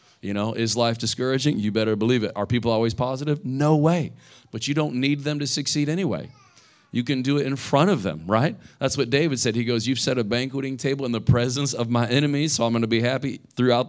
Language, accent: English, American